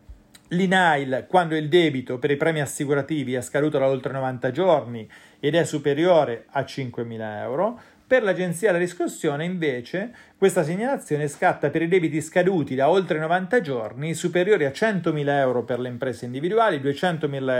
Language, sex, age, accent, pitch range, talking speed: Italian, male, 40-59, native, 130-175 Hz, 155 wpm